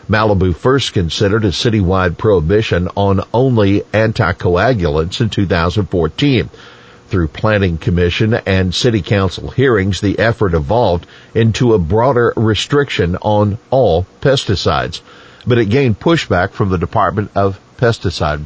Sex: male